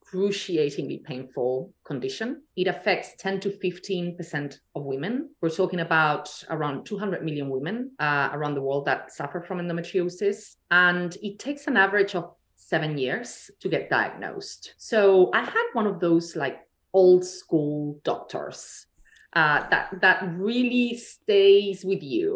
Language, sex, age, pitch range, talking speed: English, female, 30-49, 150-205 Hz, 145 wpm